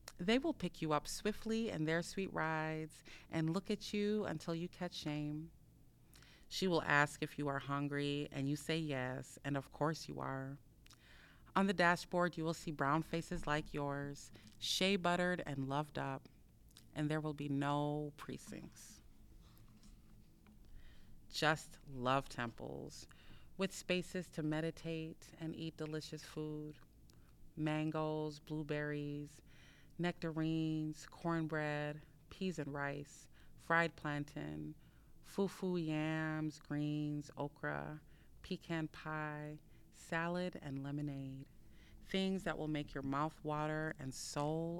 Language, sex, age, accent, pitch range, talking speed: English, female, 30-49, American, 140-165 Hz, 125 wpm